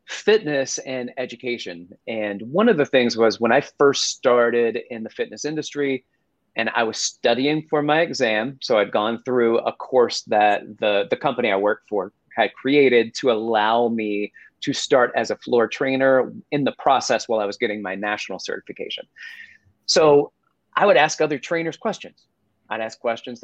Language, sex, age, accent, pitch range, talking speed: English, male, 30-49, American, 120-155 Hz, 175 wpm